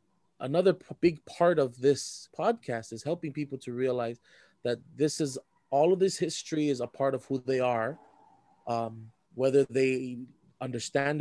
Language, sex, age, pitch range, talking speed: English, male, 20-39, 120-150 Hz, 155 wpm